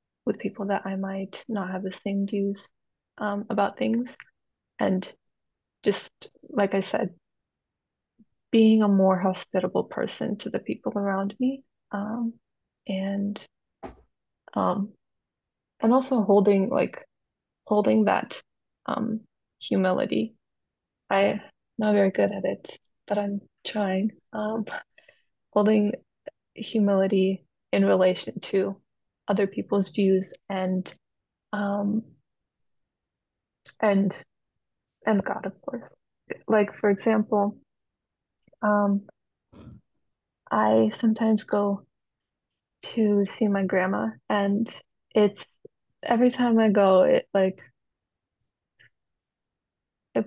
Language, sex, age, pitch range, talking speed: English, female, 20-39, 190-215 Hz, 100 wpm